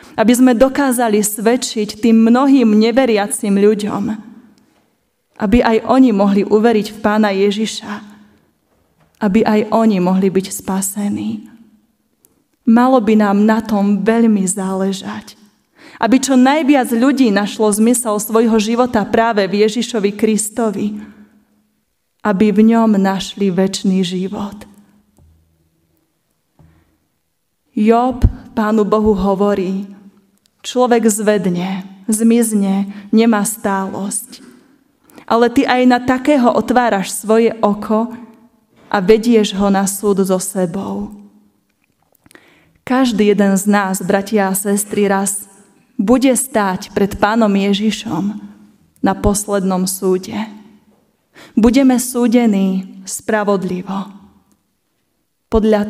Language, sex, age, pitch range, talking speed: Slovak, female, 30-49, 200-230 Hz, 100 wpm